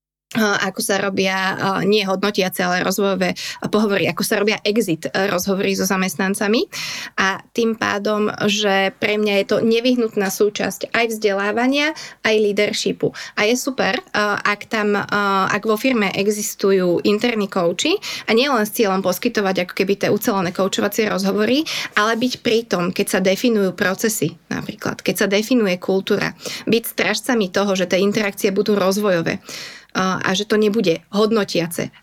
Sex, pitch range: female, 195-220 Hz